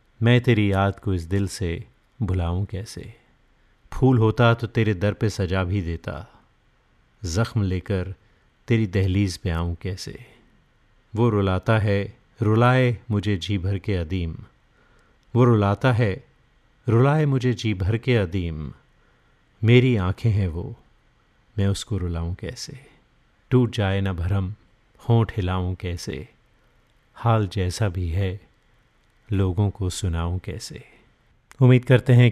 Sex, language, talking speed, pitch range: male, Hindi, 130 wpm, 95-115 Hz